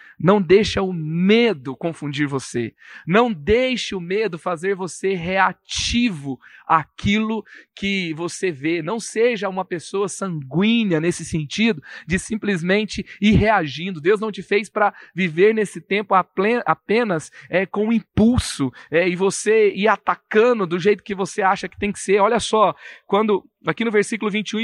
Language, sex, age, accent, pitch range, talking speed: Portuguese, male, 40-59, Brazilian, 175-225 Hz, 150 wpm